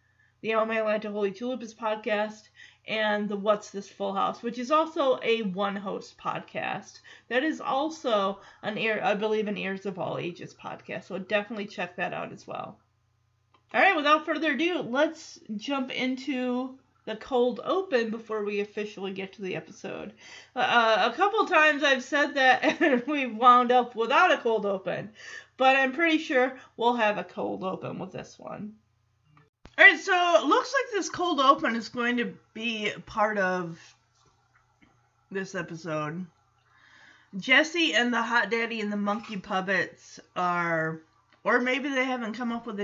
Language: English